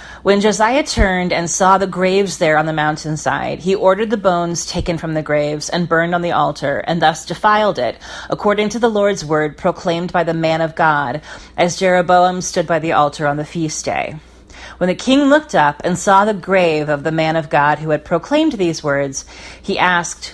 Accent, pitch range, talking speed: American, 155-190 Hz, 205 wpm